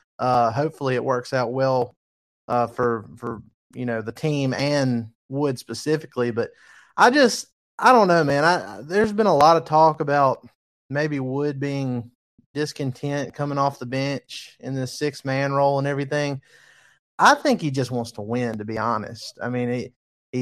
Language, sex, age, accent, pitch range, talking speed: English, male, 30-49, American, 120-150 Hz, 175 wpm